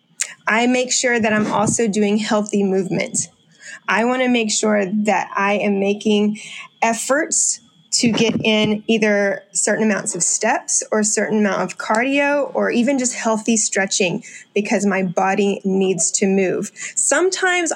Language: English